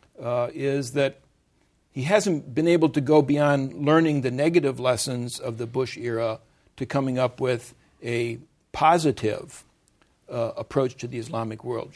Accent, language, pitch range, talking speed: American, English, 125-145 Hz, 150 wpm